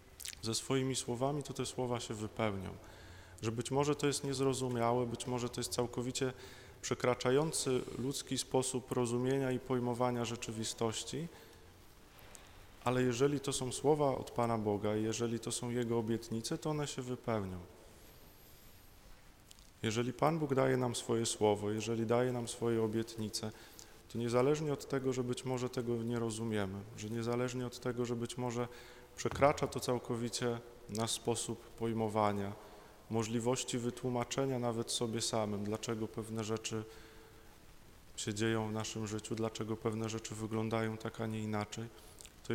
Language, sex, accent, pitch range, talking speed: Polish, male, native, 110-125 Hz, 140 wpm